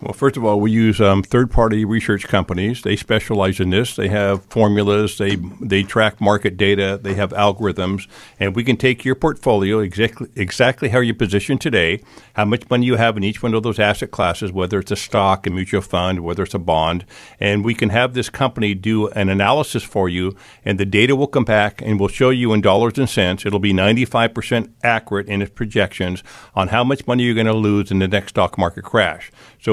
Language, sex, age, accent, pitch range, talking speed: English, male, 50-69, American, 100-125 Hz, 215 wpm